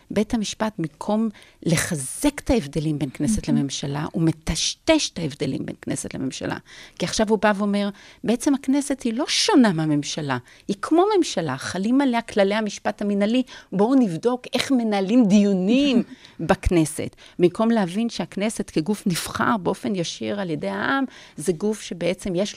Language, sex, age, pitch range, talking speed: Hebrew, female, 40-59, 160-225 Hz, 145 wpm